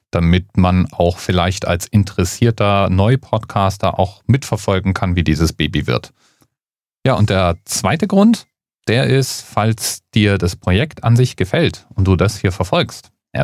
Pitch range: 85-115 Hz